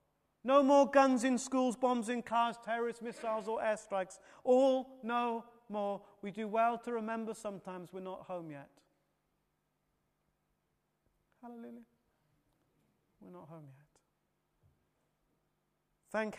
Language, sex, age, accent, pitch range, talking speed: English, male, 30-49, British, 220-270 Hz, 115 wpm